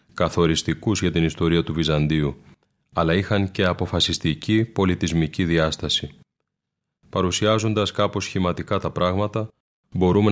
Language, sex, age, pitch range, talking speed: Greek, male, 30-49, 85-105 Hz, 105 wpm